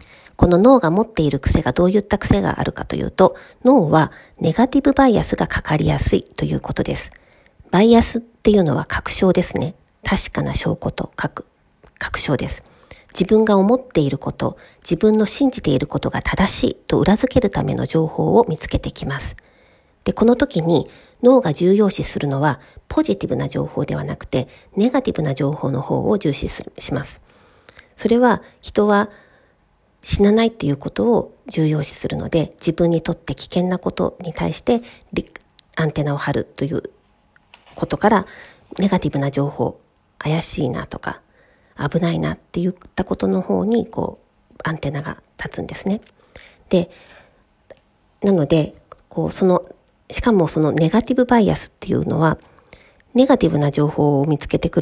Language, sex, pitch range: Japanese, female, 155-230 Hz